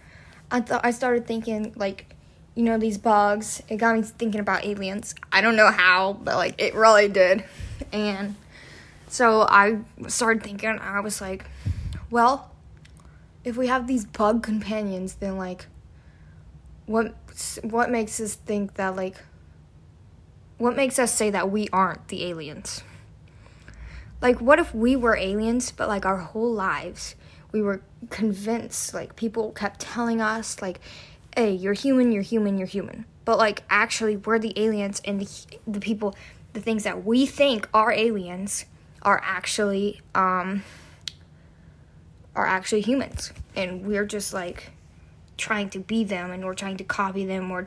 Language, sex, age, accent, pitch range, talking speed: English, female, 10-29, American, 190-225 Hz, 155 wpm